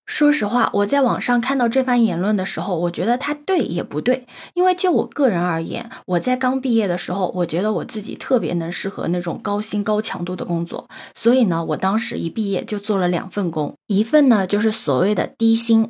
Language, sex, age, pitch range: Chinese, female, 20-39, 190-250 Hz